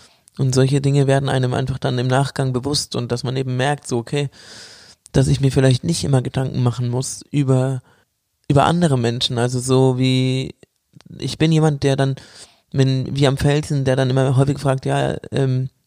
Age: 20-39